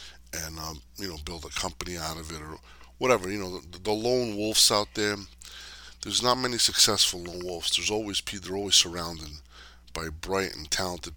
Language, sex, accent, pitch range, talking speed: English, male, American, 75-100 Hz, 195 wpm